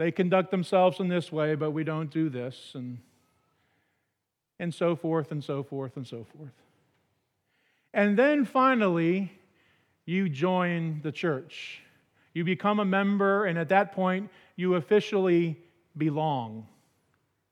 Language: English